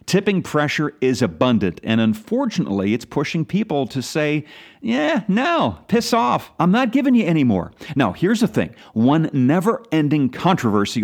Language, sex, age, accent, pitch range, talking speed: English, male, 40-59, American, 125-195 Hz, 150 wpm